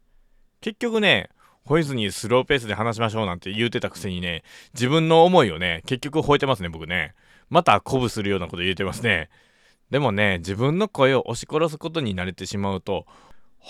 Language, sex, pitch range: Japanese, male, 100-160 Hz